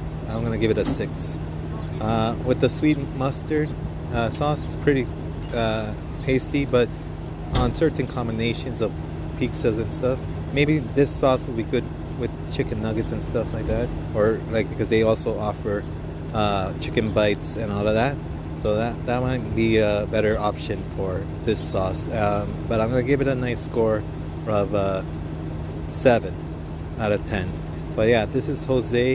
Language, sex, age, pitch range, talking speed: English, male, 30-49, 100-115 Hz, 170 wpm